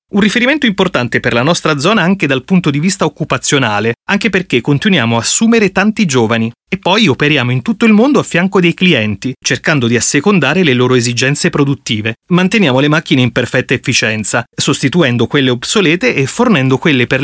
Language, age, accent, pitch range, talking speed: Italian, 30-49, native, 125-185 Hz, 180 wpm